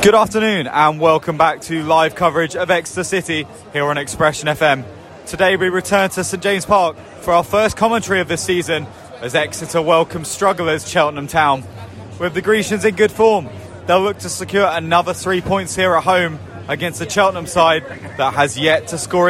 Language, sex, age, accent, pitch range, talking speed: English, male, 20-39, British, 155-200 Hz, 185 wpm